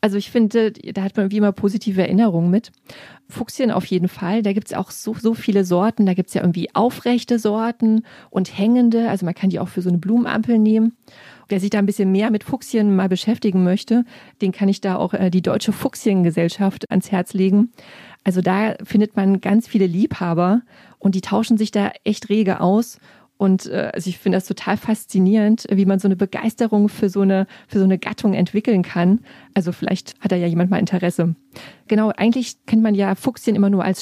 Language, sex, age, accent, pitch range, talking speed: German, female, 30-49, German, 190-220 Hz, 205 wpm